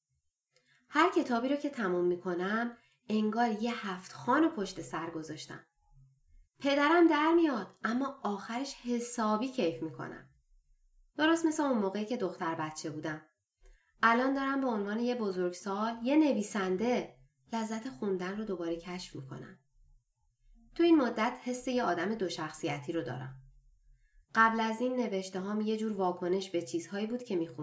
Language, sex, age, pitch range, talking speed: Persian, female, 20-39, 155-240 Hz, 145 wpm